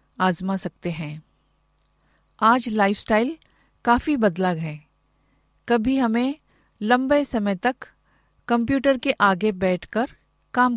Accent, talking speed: native, 100 wpm